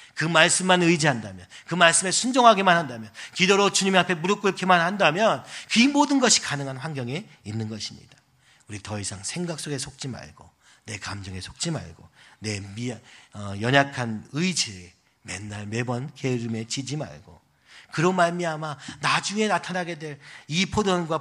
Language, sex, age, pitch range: Korean, male, 40-59, 110-165 Hz